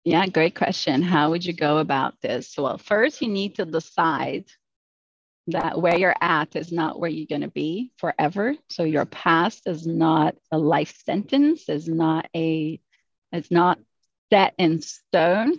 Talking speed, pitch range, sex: 160 wpm, 155-180 Hz, female